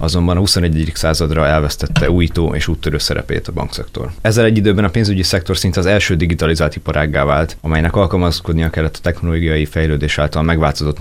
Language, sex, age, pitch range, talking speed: Hungarian, male, 30-49, 80-90 Hz, 170 wpm